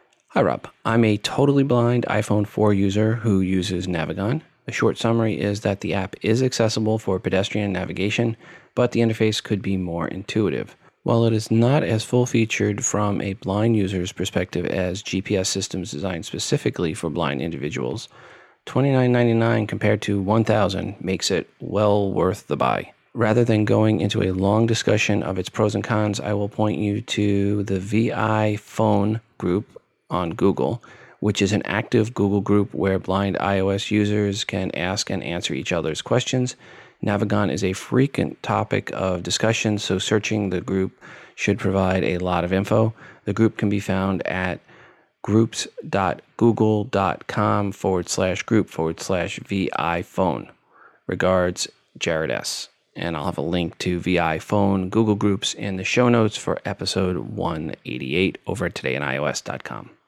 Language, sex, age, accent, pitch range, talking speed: English, male, 30-49, American, 95-110 Hz, 155 wpm